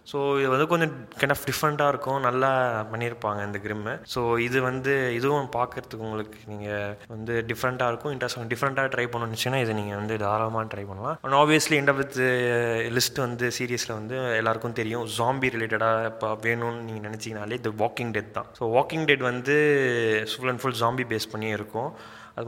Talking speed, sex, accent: 165 wpm, male, native